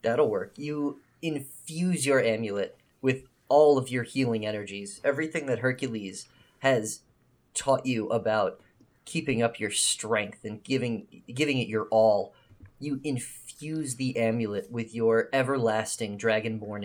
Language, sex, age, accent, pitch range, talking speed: English, male, 30-49, American, 110-130 Hz, 130 wpm